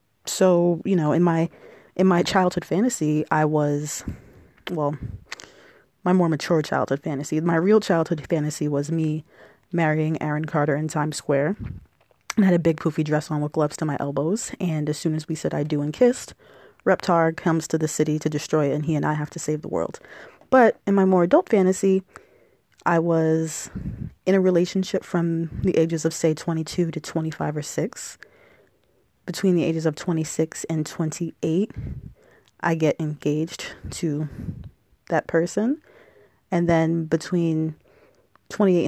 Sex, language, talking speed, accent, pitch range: female, English, 165 wpm, American, 155-180 Hz